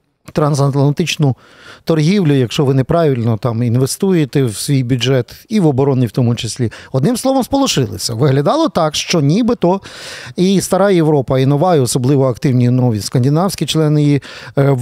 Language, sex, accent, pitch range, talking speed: Ukrainian, male, native, 130-175 Hz, 140 wpm